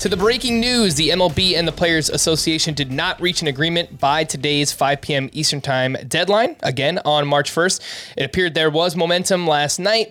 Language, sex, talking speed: English, male, 195 wpm